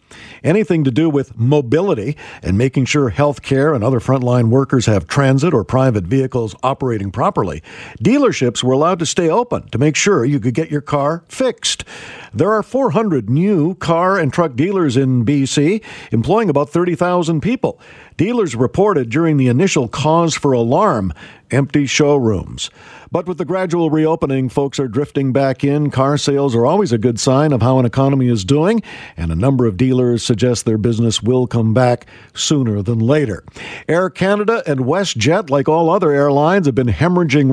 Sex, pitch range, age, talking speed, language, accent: male, 125-165 Hz, 50-69, 175 wpm, English, American